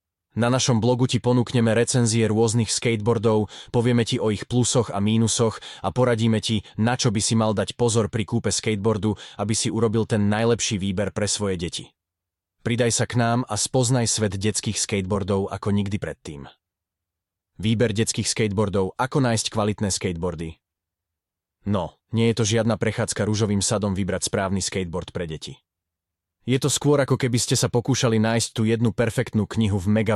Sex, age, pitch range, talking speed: male, 20-39, 95-115 Hz, 165 wpm